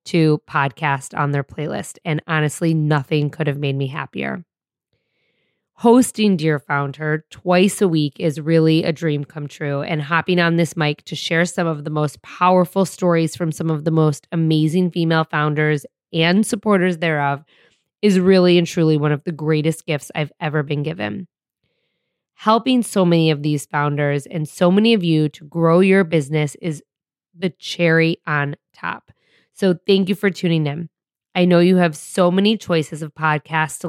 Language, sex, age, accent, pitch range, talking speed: English, female, 20-39, American, 155-180 Hz, 175 wpm